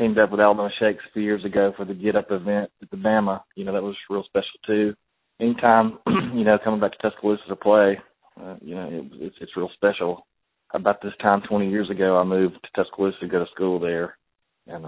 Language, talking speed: English, 235 wpm